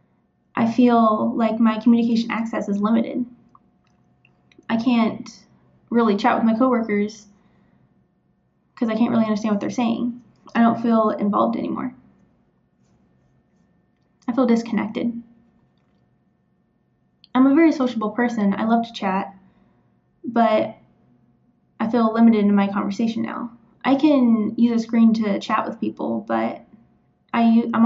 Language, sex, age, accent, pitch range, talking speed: English, female, 10-29, American, 205-245 Hz, 125 wpm